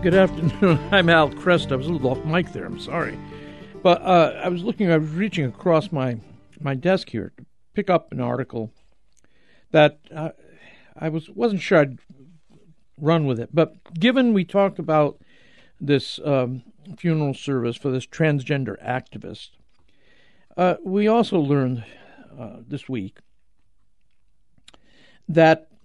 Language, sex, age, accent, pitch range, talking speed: English, male, 60-79, American, 130-175 Hz, 145 wpm